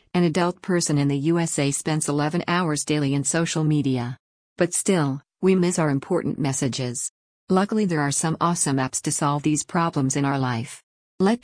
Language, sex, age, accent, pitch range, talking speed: English, female, 50-69, American, 140-170 Hz, 180 wpm